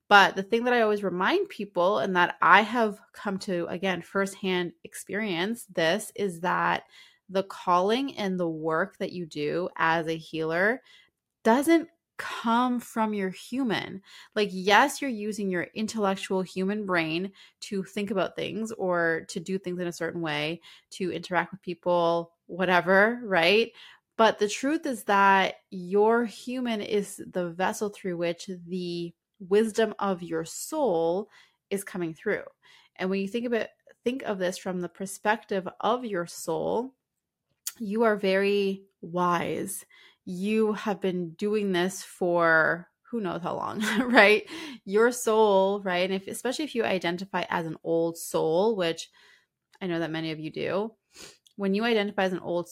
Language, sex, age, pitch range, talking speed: English, female, 20-39, 175-215 Hz, 160 wpm